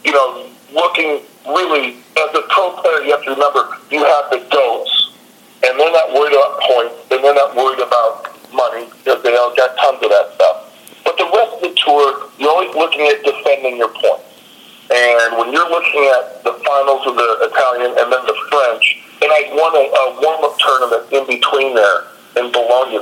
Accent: American